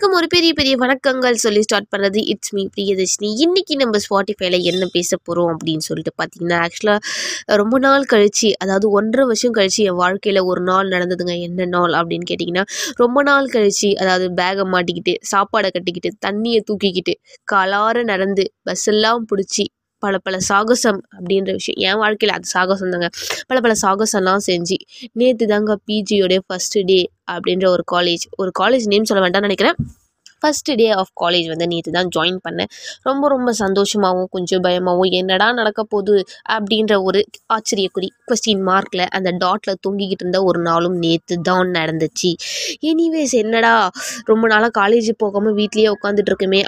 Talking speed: 145 wpm